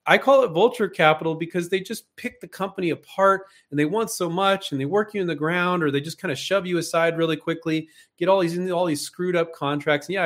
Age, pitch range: 40-59, 130-180 Hz